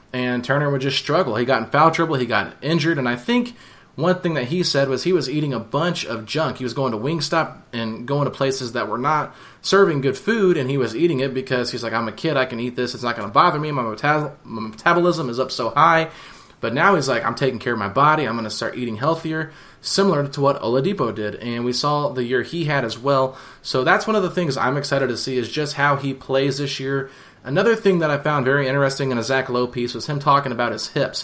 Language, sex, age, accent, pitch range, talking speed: English, male, 20-39, American, 125-155 Hz, 260 wpm